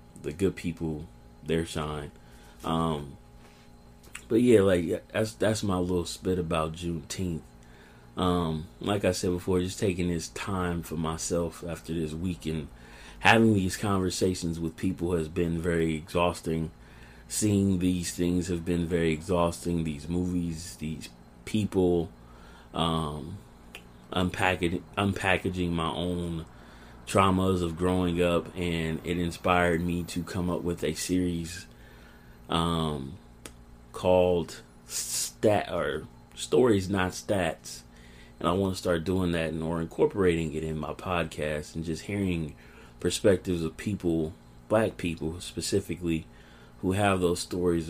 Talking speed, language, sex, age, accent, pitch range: 125 wpm, English, male, 30-49, American, 75-90 Hz